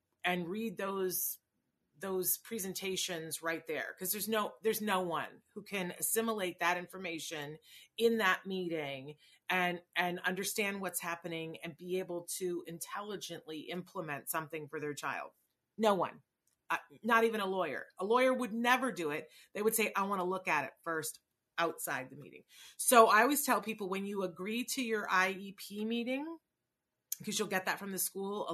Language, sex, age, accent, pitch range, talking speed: English, female, 40-59, American, 170-220 Hz, 170 wpm